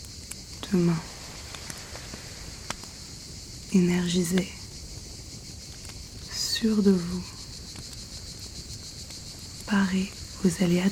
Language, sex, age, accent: French, female, 30-49, French